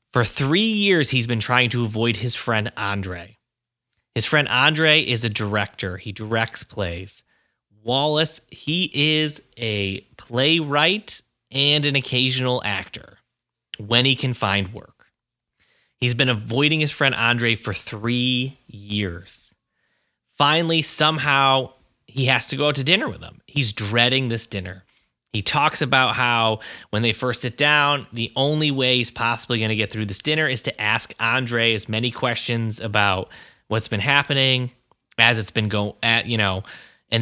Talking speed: 155 wpm